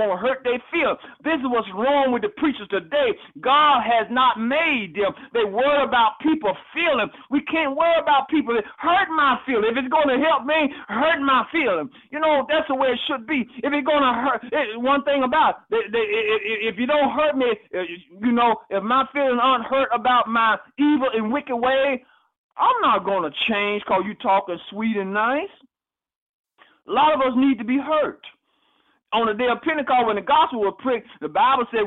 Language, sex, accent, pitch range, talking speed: English, male, American, 230-295 Hz, 205 wpm